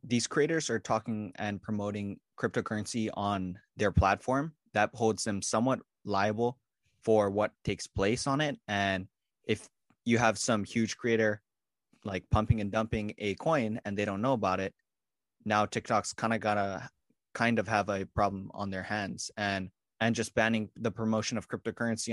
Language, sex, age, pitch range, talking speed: English, male, 20-39, 105-120 Hz, 170 wpm